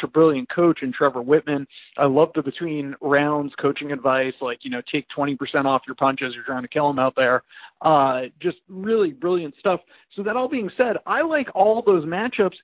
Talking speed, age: 205 wpm, 40-59